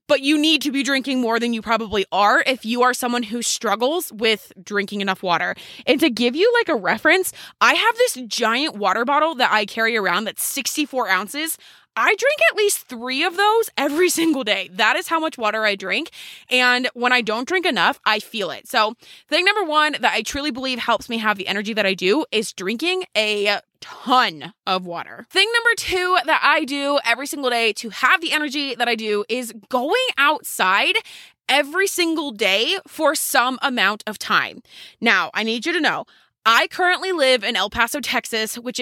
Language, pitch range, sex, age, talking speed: English, 220-300 Hz, female, 20-39, 200 wpm